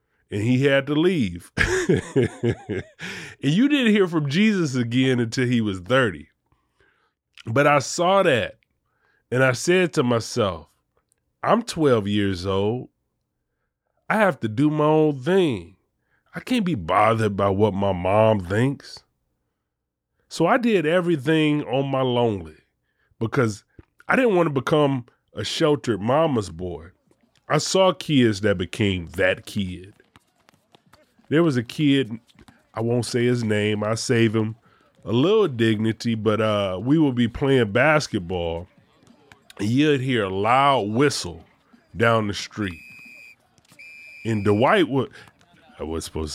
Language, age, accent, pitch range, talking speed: English, 30-49, American, 100-145 Hz, 135 wpm